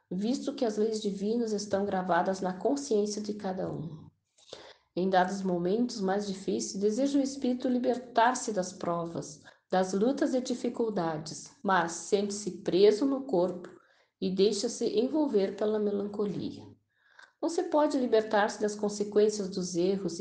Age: 50-69